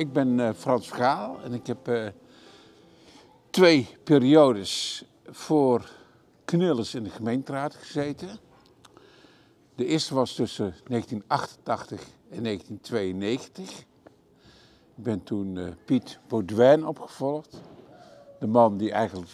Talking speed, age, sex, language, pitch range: 100 wpm, 50-69, male, Dutch, 110-145 Hz